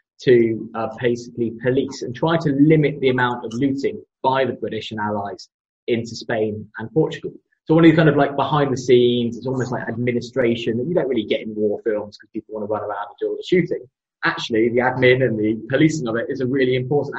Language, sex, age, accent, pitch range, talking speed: English, male, 20-39, British, 120-155 Hz, 230 wpm